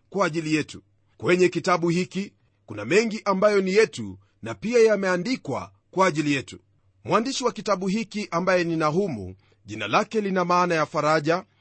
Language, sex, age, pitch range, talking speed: Swahili, male, 40-59, 130-210 Hz, 155 wpm